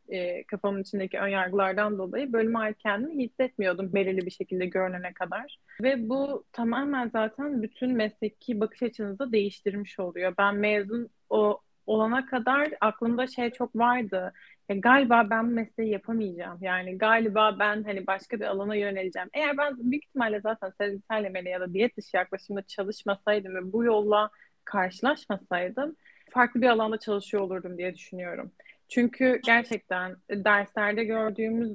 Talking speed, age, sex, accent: 140 wpm, 30-49, female, native